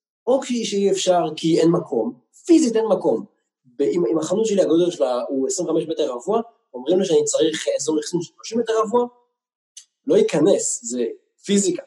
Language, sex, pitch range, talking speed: Hebrew, male, 150-230 Hz, 160 wpm